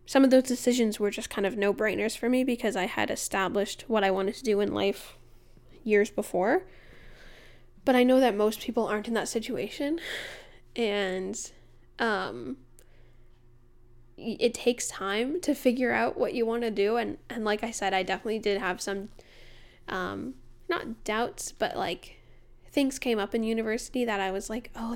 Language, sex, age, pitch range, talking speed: English, female, 10-29, 190-235 Hz, 175 wpm